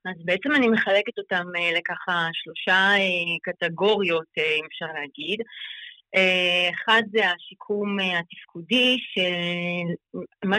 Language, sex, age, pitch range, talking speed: Hebrew, female, 30-49, 180-225 Hz, 90 wpm